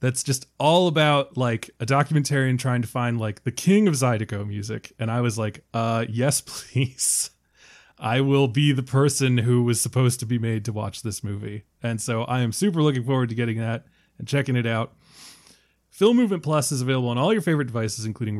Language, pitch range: English, 115-150 Hz